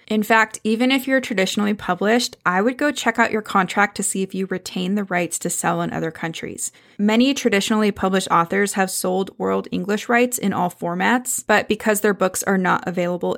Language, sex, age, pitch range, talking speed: English, female, 20-39, 185-230 Hz, 200 wpm